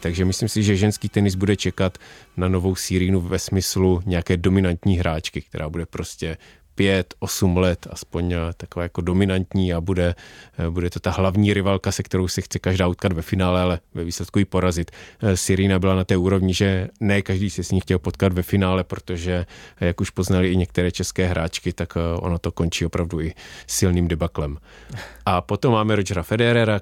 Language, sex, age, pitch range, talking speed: Czech, male, 30-49, 90-100 Hz, 185 wpm